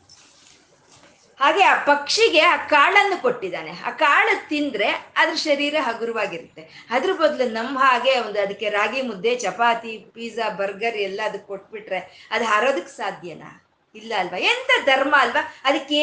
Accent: native